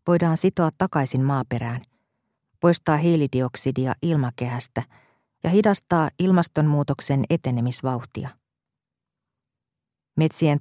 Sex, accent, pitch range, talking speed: female, native, 130-170 Hz, 70 wpm